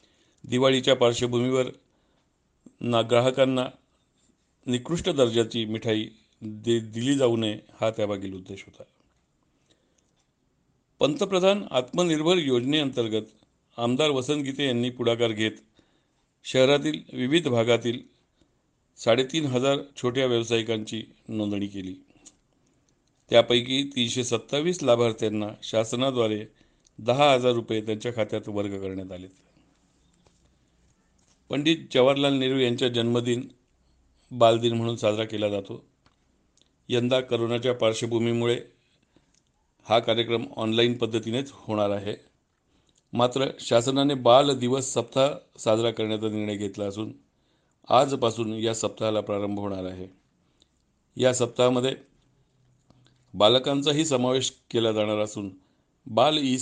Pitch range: 105-130 Hz